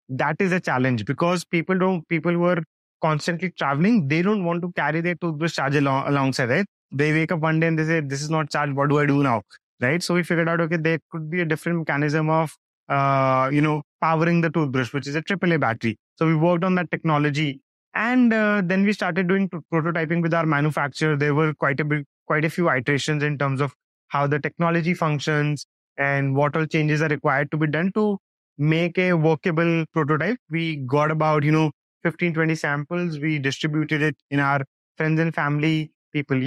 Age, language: 20-39, English